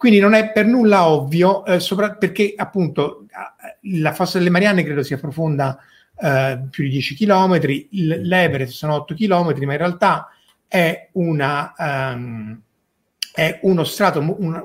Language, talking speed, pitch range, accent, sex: Italian, 150 wpm, 140-185 Hz, native, male